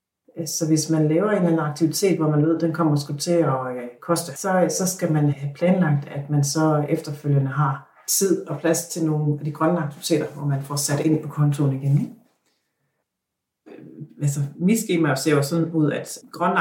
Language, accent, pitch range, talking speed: Danish, native, 150-180 Hz, 200 wpm